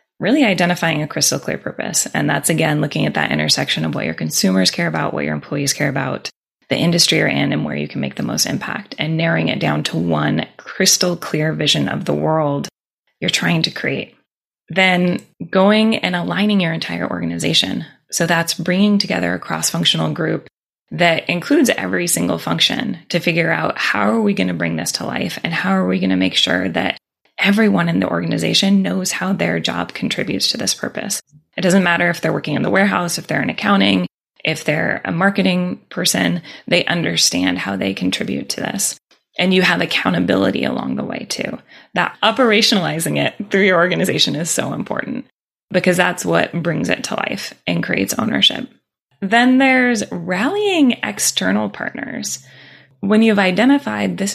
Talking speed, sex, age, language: 180 wpm, female, 20-39, English